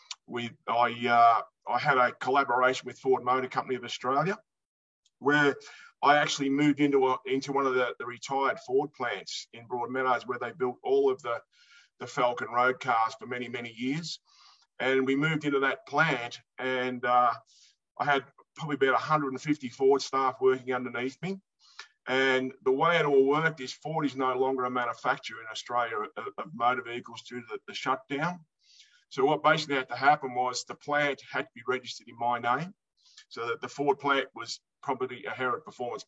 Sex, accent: male, Australian